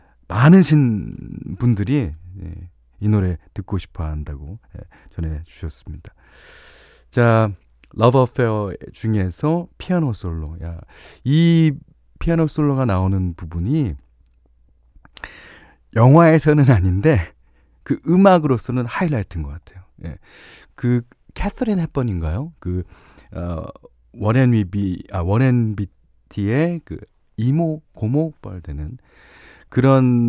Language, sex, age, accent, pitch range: Korean, male, 40-59, native, 80-130 Hz